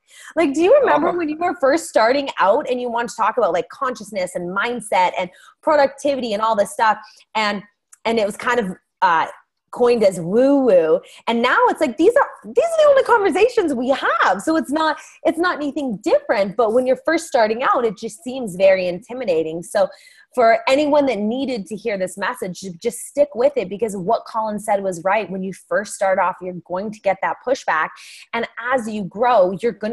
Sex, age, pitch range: female, 20-39, 195-285 Hz